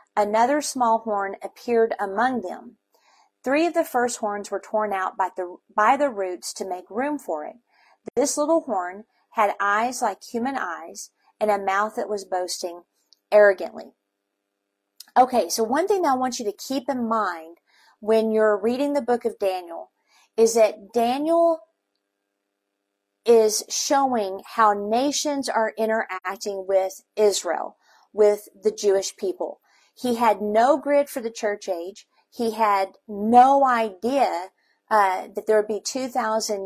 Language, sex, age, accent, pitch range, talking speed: English, female, 40-59, American, 190-235 Hz, 150 wpm